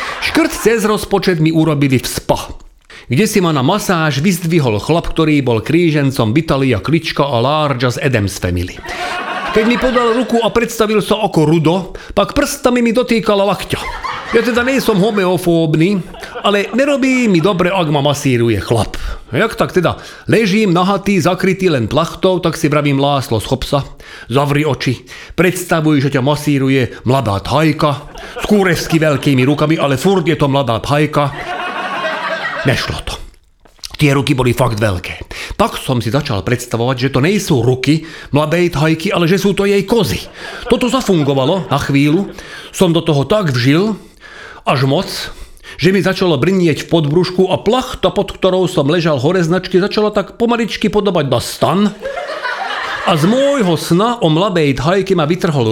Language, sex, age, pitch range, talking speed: Slovak, male, 40-59, 140-200 Hz, 160 wpm